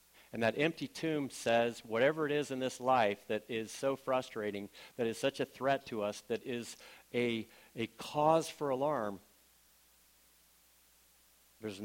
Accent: American